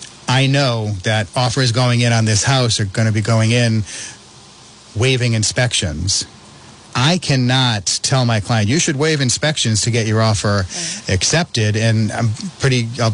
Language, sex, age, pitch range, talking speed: English, male, 30-49, 110-135 Hz, 160 wpm